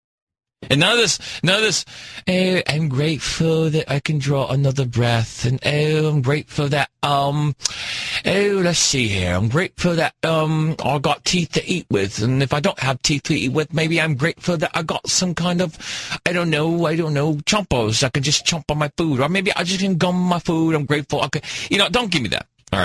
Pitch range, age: 125-170 Hz, 40-59